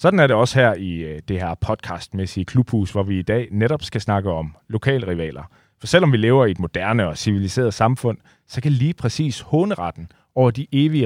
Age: 30-49